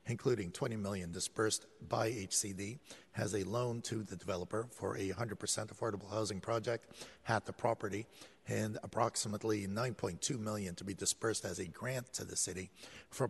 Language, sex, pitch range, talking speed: English, male, 100-120 Hz, 160 wpm